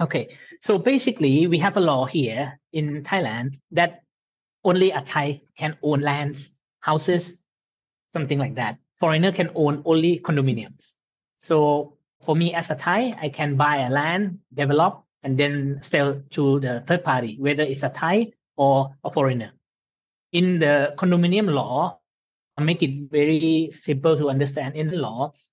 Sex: male